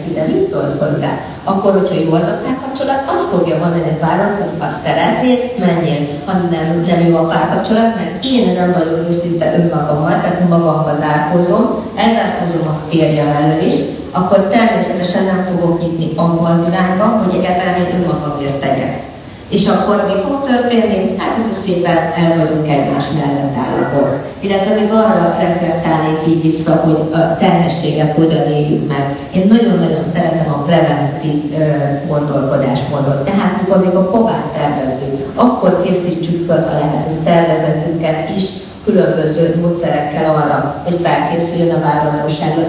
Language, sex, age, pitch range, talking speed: Hungarian, female, 30-49, 150-190 Hz, 140 wpm